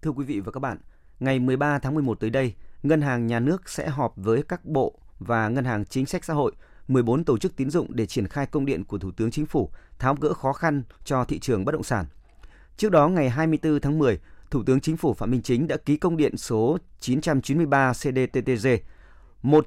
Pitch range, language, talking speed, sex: 115-155 Hz, Vietnamese, 225 wpm, male